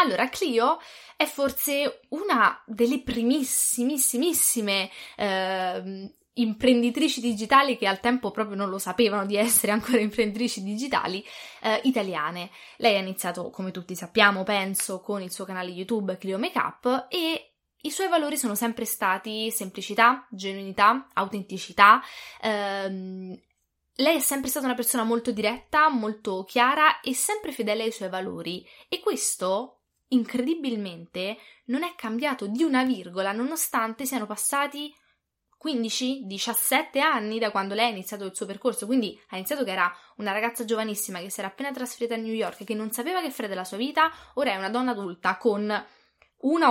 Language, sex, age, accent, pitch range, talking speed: English, female, 20-39, Italian, 200-265 Hz, 155 wpm